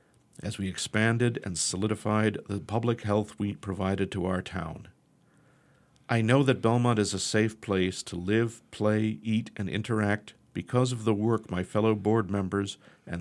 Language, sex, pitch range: English, male, 95-120 Hz